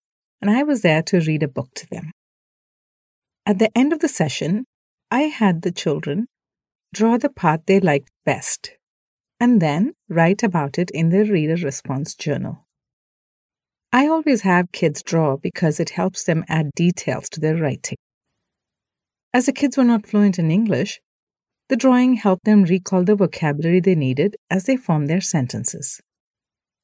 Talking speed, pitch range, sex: 160 wpm, 170-230 Hz, female